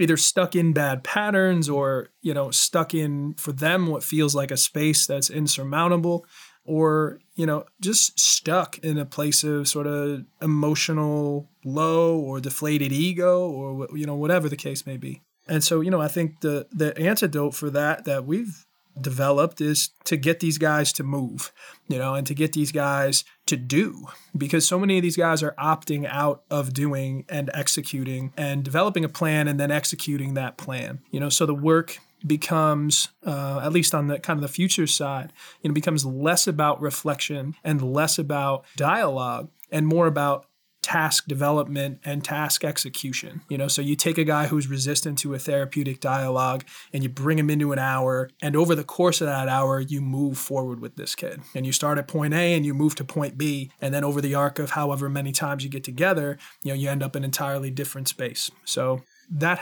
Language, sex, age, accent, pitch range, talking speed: English, male, 20-39, American, 140-160 Hz, 200 wpm